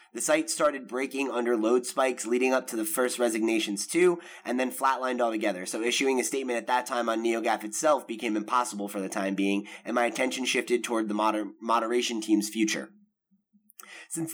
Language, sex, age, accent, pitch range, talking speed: English, male, 20-39, American, 110-130 Hz, 185 wpm